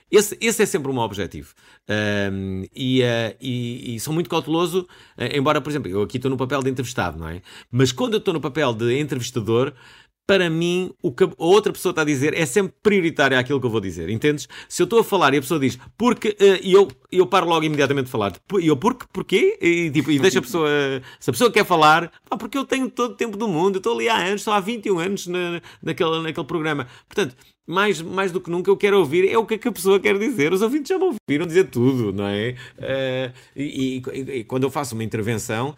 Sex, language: male, Portuguese